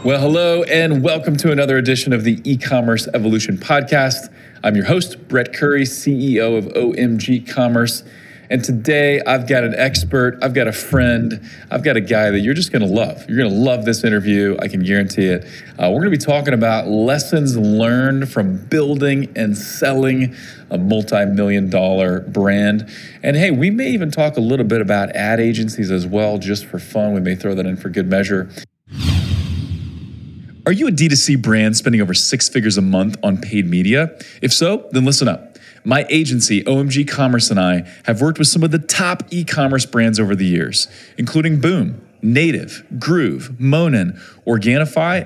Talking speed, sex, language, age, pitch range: 180 wpm, male, English, 40-59, 110-150 Hz